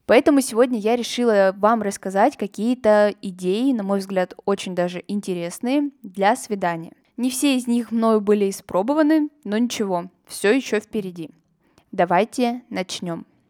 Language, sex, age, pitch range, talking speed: Russian, female, 10-29, 190-235 Hz, 135 wpm